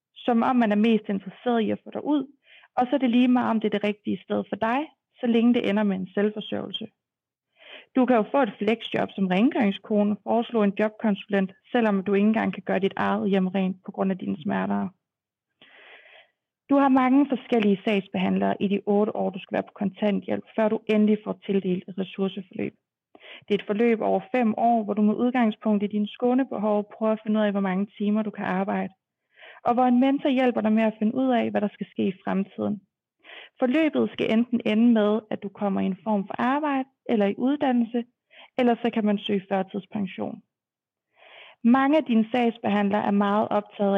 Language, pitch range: Danish, 200-245 Hz